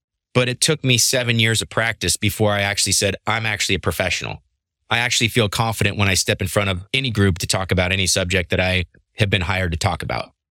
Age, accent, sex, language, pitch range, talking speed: 30-49, American, male, English, 90-115 Hz, 235 wpm